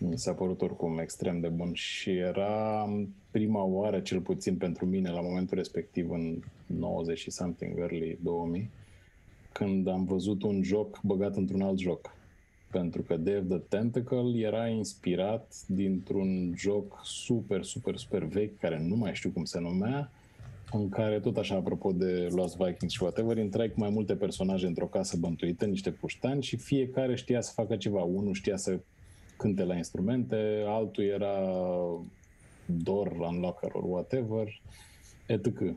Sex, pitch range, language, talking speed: male, 90-110 Hz, Romanian, 150 wpm